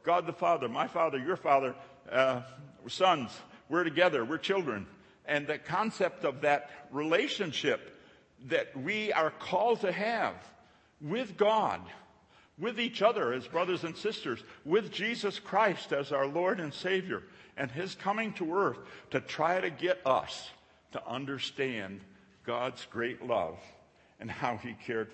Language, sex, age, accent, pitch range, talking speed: English, male, 60-79, American, 135-185 Hz, 145 wpm